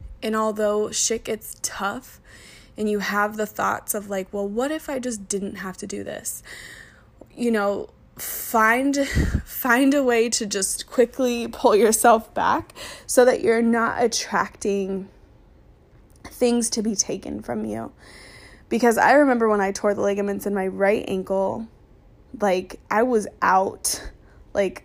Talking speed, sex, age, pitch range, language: 150 wpm, female, 20-39, 200-235 Hz, English